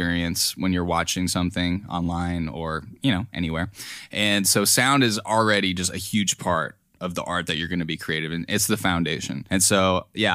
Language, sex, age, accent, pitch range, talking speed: English, male, 10-29, American, 90-110 Hz, 195 wpm